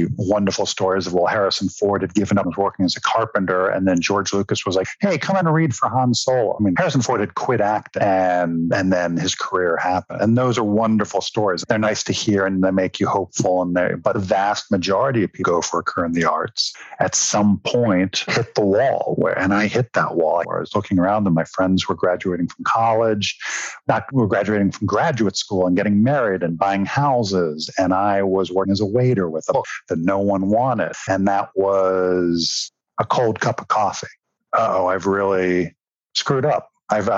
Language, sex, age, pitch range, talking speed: English, male, 50-69, 95-110 Hz, 215 wpm